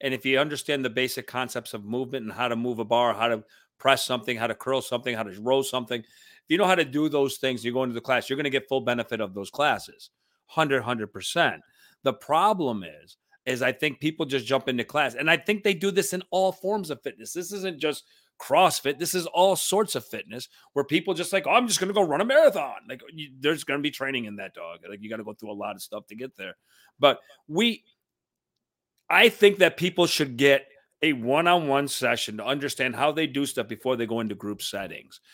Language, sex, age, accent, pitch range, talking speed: English, male, 40-59, American, 120-165 Hz, 245 wpm